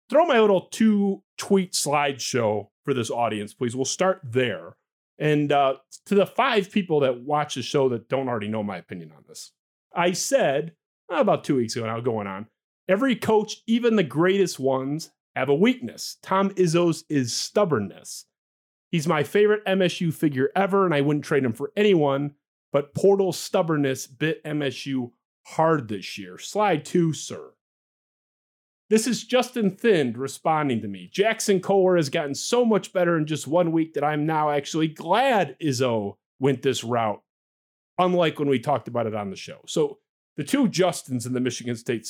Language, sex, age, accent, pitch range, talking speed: English, male, 30-49, American, 125-185 Hz, 175 wpm